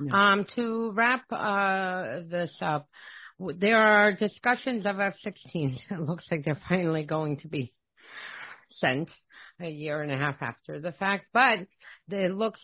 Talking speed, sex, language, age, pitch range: 145 wpm, female, English, 40-59, 145-185 Hz